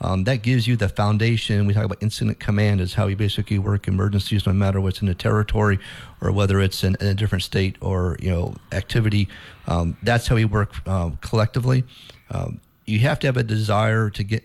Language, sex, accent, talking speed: English, male, American, 210 wpm